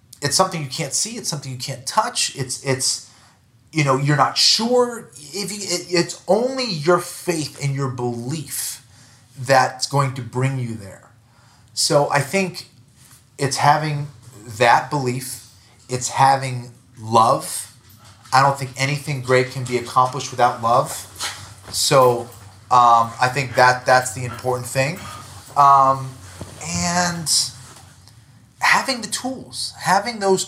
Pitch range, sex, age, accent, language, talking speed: 115-140 Hz, male, 30-49, American, English, 135 wpm